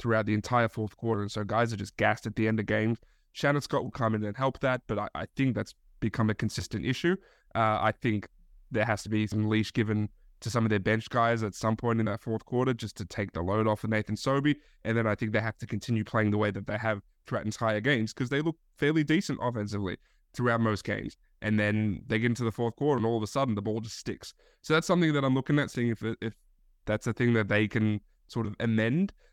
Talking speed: 260 wpm